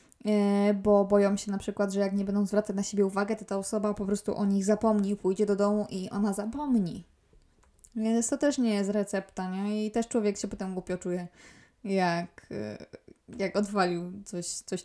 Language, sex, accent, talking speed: Polish, female, native, 185 wpm